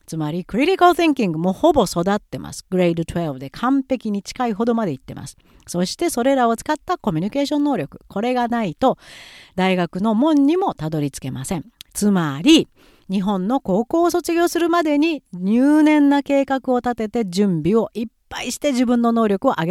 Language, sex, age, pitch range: Japanese, female, 40-59, 180-275 Hz